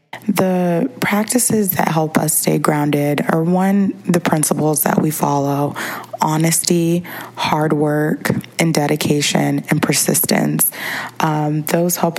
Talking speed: 120 wpm